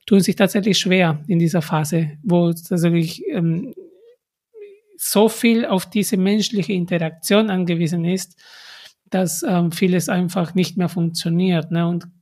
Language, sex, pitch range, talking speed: German, male, 175-220 Hz, 135 wpm